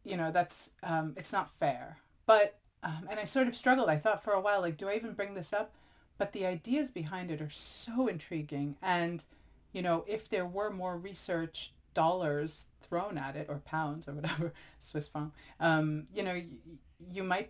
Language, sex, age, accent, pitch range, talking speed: English, female, 30-49, American, 150-190 Hz, 200 wpm